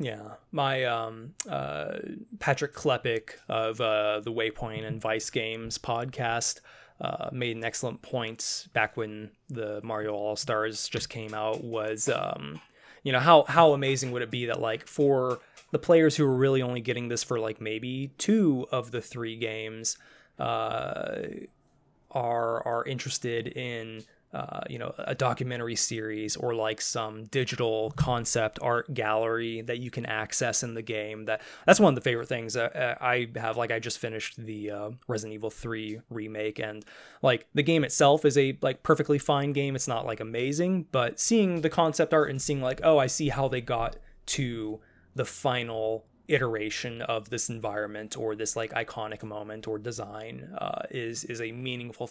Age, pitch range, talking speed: 20-39, 110-130 Hz, 170 wpm